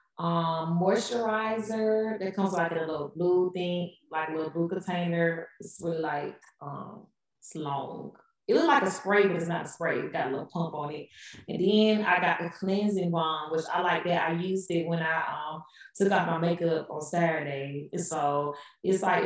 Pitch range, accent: 165-195 Hz, American